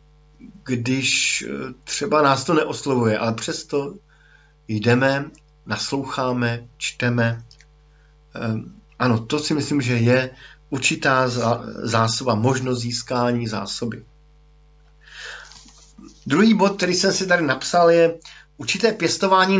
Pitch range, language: 120-150 Hz, Slovak